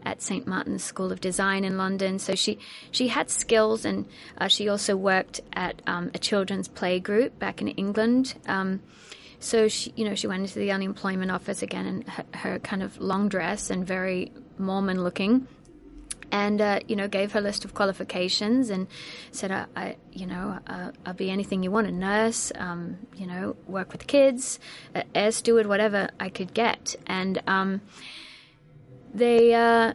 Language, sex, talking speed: English, female, 175 wpm